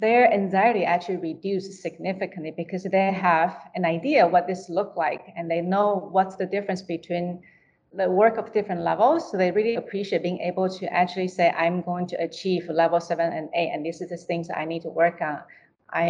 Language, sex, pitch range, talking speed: English, female, 170-195 Hz, 200 wpm